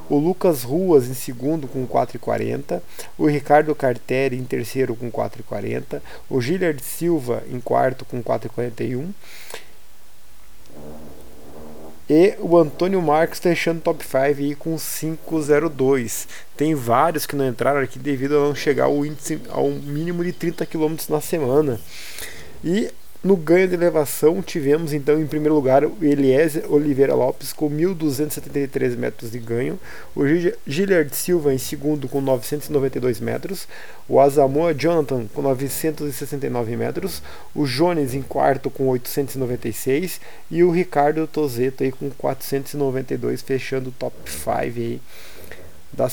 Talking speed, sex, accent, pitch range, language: 130 wpm, male, Brazilian, 125-155 Hz, Portuguese